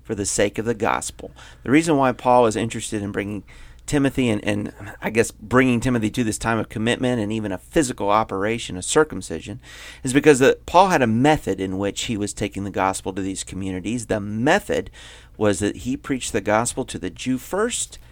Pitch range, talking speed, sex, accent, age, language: 100-135 Hz, 205 wpm, male, American, 40-59, English